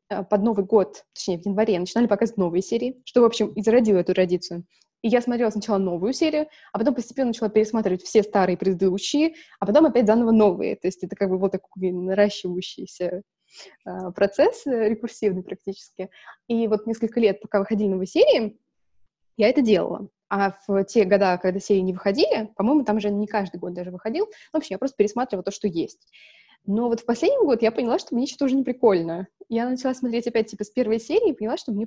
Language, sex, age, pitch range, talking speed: Russian, female, 20-39, 195-235 Hz, 200 wpm